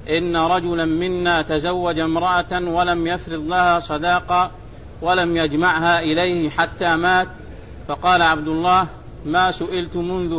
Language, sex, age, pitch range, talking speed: Arabic, male, 50-69, 165-180 Hz, 115 wpm